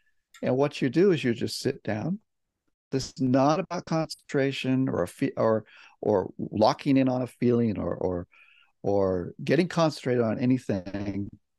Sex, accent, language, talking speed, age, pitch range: male, American, English, 160 wpm, 50-69, 110-140 Hz